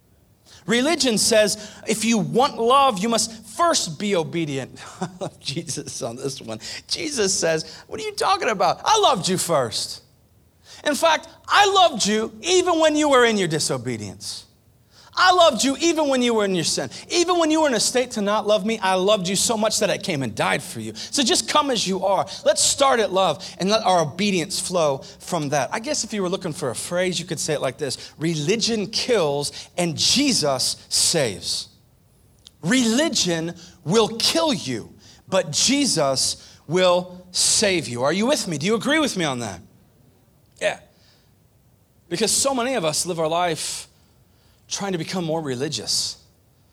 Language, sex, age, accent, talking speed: English, male, 30-49, American, 185 wpm